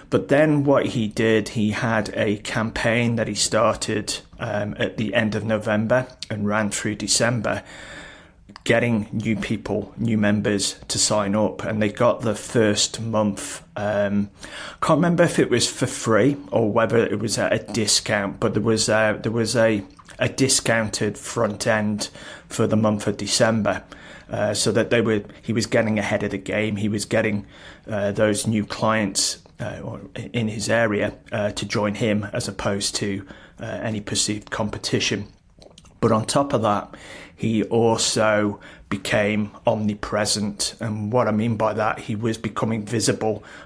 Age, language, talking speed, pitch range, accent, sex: 30-49, English, 165 wpm, 105-115 Hz, British, male